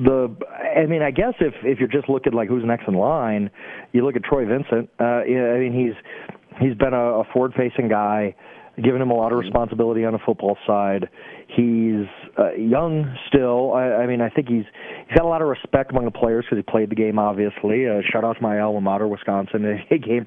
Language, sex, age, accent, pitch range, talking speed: English, male, 30-49, American, 110-130 Hz, 230 wpm